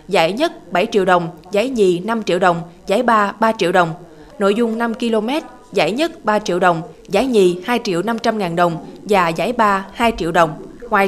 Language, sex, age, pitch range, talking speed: Vietnamese, female, 20-39, 185-235 Hz, 205 wpm